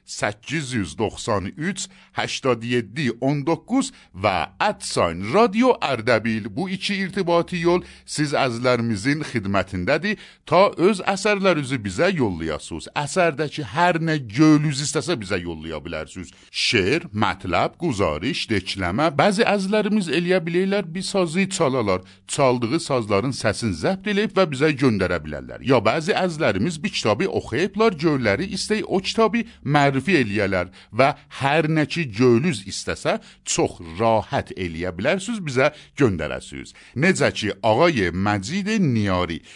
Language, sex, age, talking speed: Persian, male, 50-69, 115 wpm